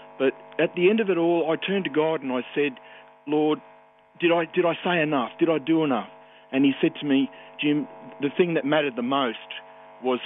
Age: 40-59